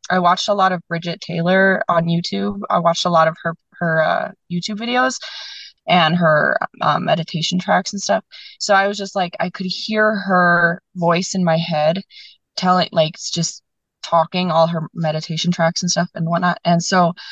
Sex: female